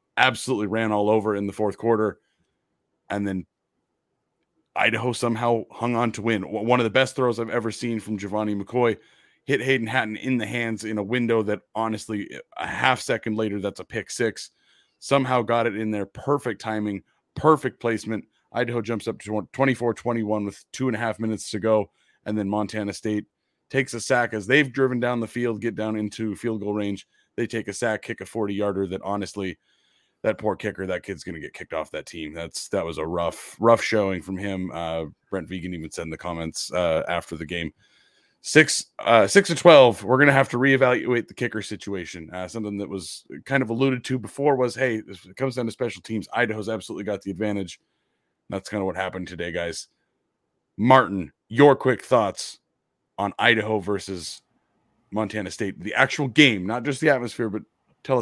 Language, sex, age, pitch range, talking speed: English, male, 30-49, 100-120 Hz, 195 wpm